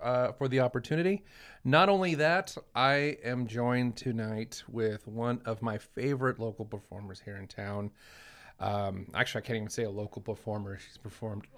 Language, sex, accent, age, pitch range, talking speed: English, male, American, 30-49, 110-140 Hz, 165 wpm